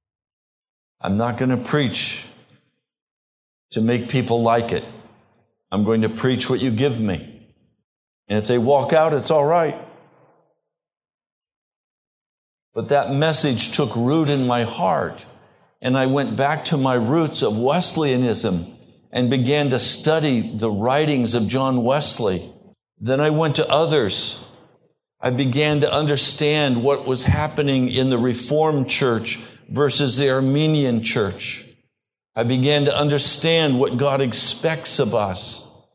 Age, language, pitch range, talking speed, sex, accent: 50-69, English, 120-150 Hz, 135 wpm, male, American